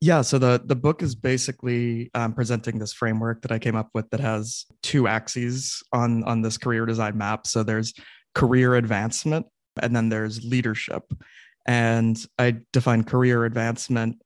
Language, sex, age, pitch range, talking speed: English, male, 20-39, 115-125 Hz, 165 wpm